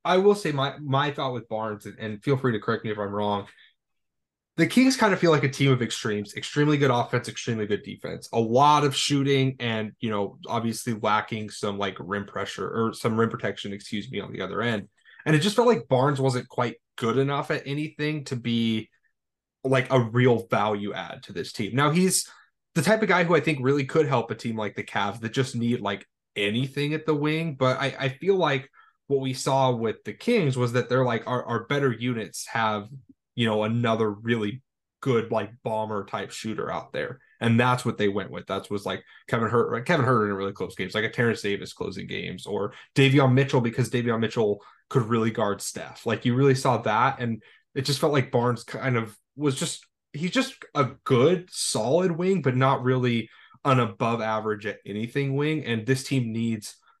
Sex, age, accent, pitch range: male, 20-39, American, 110-140 Hz